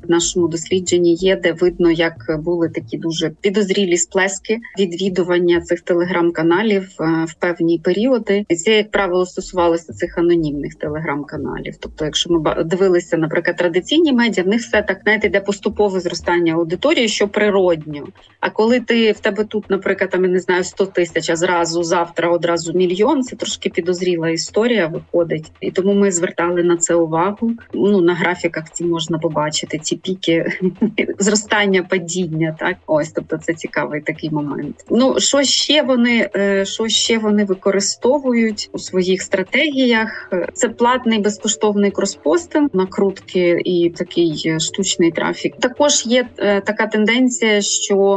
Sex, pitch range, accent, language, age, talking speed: female, 170-205 Hz, native, Ukrainian, 30-49, 140 wpm